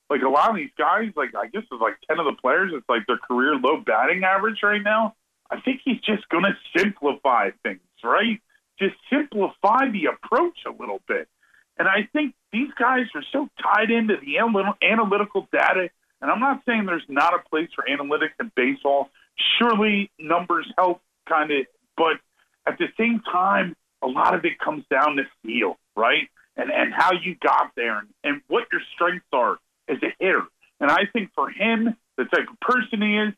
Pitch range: 175-230 Hz